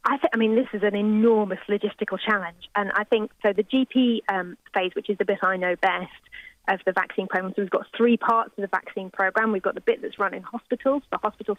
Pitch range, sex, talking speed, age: 195-230 Hz, female, 245 wpm, 30-49